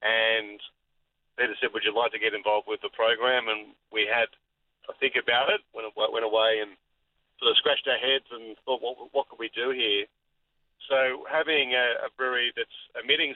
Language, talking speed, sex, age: English, 195 wpm, male, 40-59